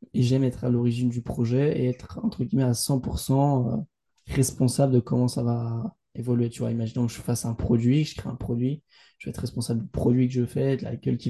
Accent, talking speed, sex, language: French, 240 wpm, male, French